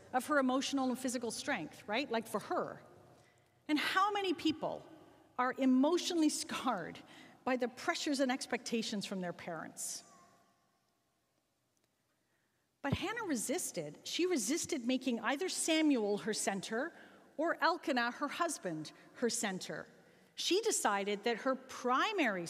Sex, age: female, 40-59